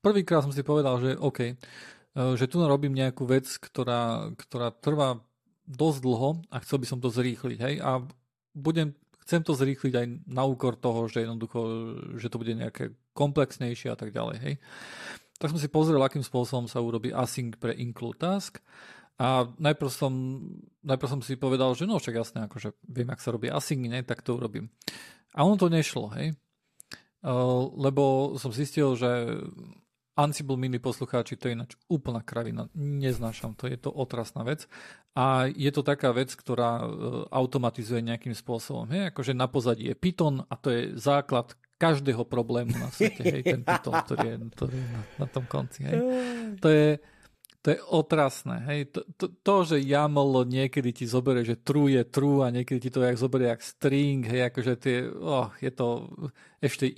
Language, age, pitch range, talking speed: Slovak, 40-59, 125-145 Hz, 165 wpm